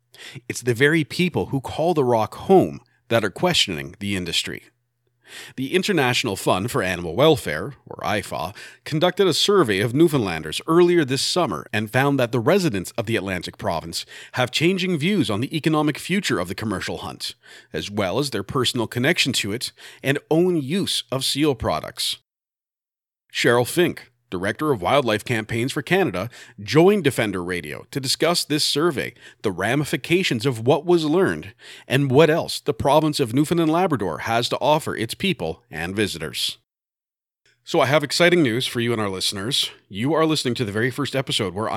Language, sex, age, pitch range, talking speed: English, male, 40-59, 105-150 Hz, 170 wpm